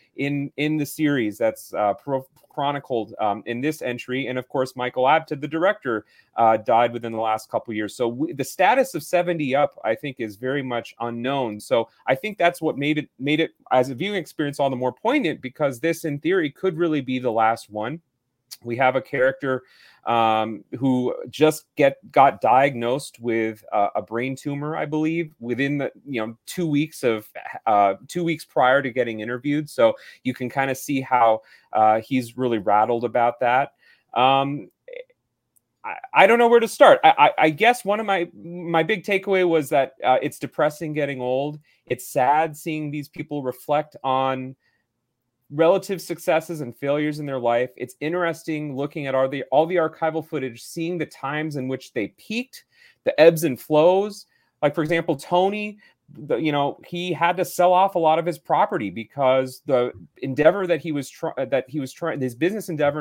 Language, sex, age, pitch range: English, male, 30-49, 125-165 Hz